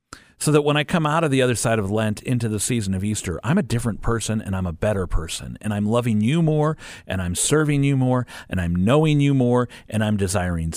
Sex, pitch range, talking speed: male, 85-115 Hz, 245 wpm